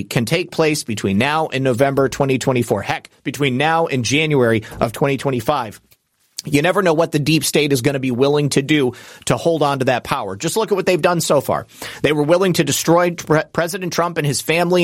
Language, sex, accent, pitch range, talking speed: English, male, American, 140-175 Hz, 215 wpm